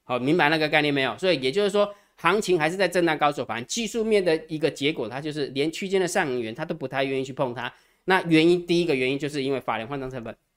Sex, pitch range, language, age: male, 140-185 Hz, Chinese, 20-39